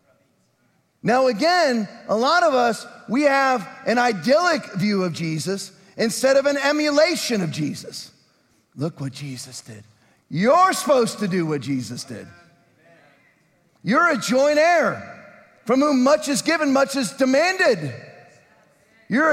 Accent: American